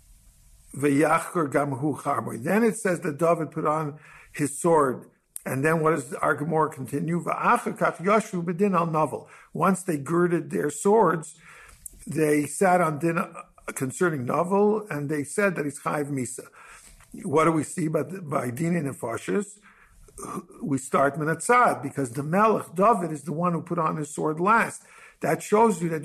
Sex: male